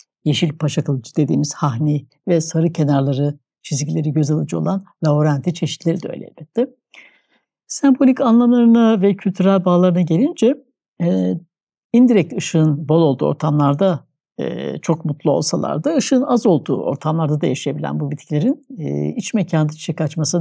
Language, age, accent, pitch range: Turkish, 60-79, native, 150-220 Hz